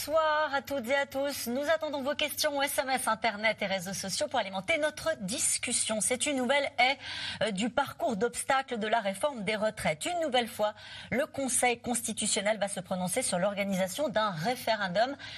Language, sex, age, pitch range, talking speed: French, female, 40-59, 190-270 Hz, 175 wpm